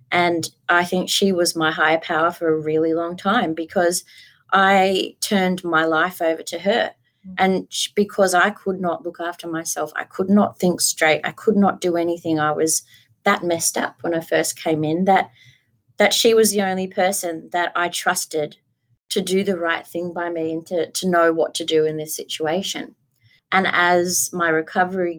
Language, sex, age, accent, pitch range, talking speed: English, female, 20-39, Australian, 160-190 Hz, 190 wpm